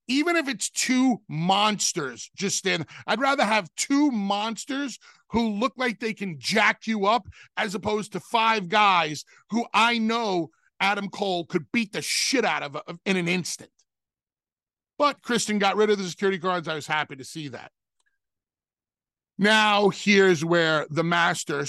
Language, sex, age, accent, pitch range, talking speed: English, male, 40-59, American, 150-205 Hz, 160 wpm